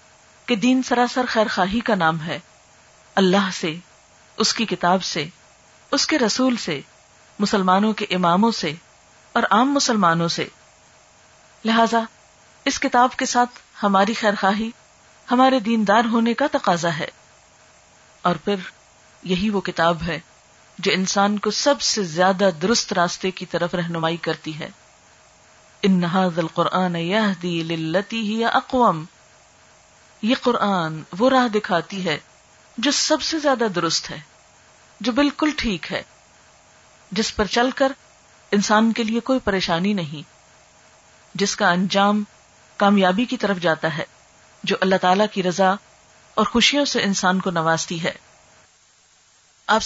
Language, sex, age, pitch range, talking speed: Urdu, female, 40-59, 175-235 Hz, 130 wpm